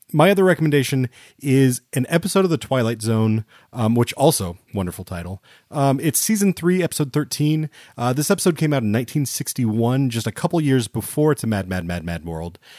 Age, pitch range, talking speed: 30-49, 100-135 Hz, 190 wpm